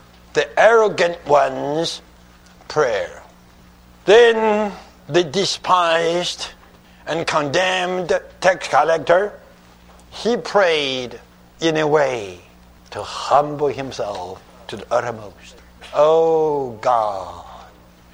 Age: 60-79